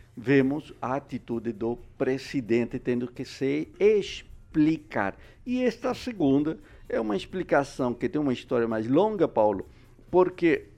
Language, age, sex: Portuguese, 60-79, male